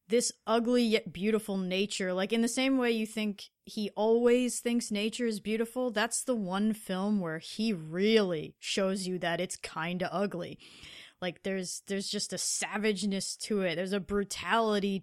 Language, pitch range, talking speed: English, 185-240 Hz, 170 wpm